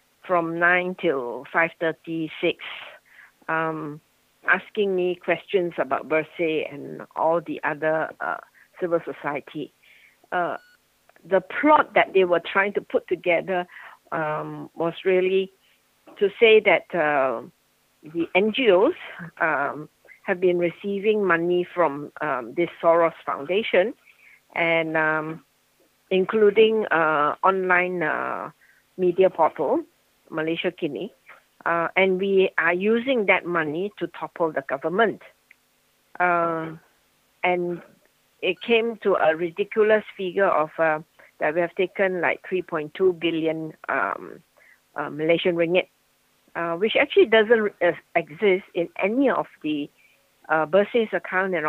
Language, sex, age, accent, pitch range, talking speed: English, female, 50-69, Malaysian, 160-195 Hz, 115 wpm